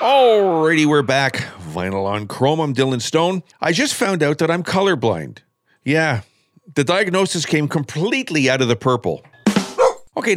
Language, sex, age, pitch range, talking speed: English, male, 50-69, 125-170 Hz, 150 wpm